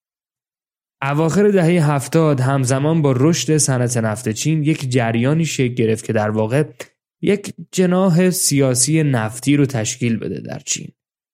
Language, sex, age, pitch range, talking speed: Persian, male, 10-29, 125-160 Hz, 130 wpm